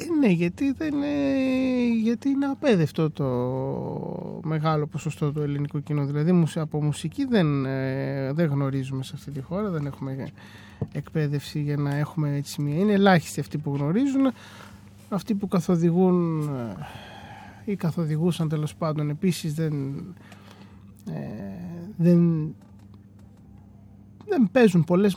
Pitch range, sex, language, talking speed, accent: 145-205 Hz, male, Greek, 115 wpm, native